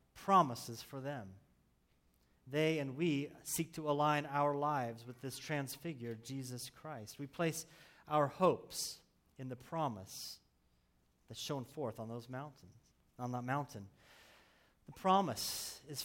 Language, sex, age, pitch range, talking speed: English, male, 30-49, 125-165 Hz, 130 wpm